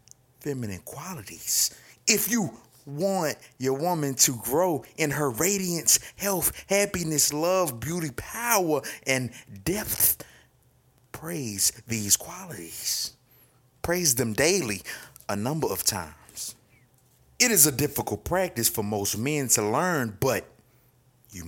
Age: 30-49